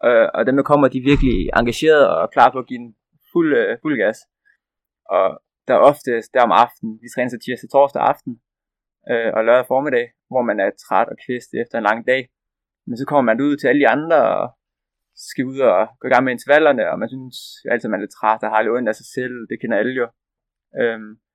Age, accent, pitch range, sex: 20-39, native, 120-140 Hz, male